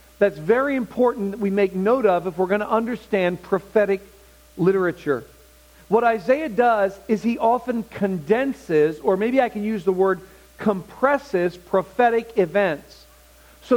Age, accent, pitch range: 40-59, American, 170-225 Hz